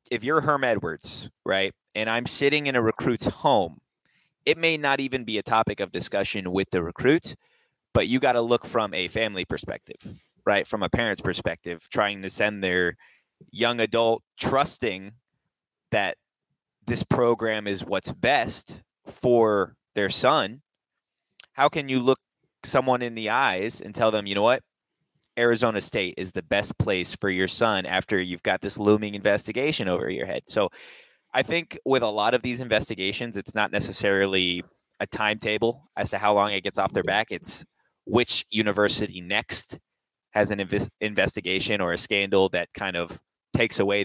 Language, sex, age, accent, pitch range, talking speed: English, male, 20-39, American, 95-120 Hz, 170 wpm